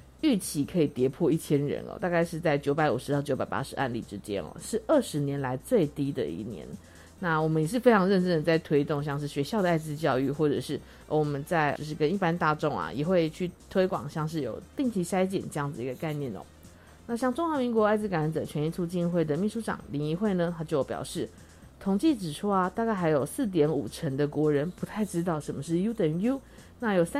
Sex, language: female, Chinese